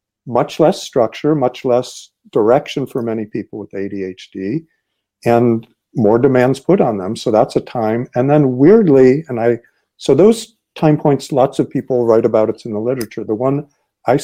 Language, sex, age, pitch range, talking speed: English, male, 60-79, 115-150 Hz, 175 wpm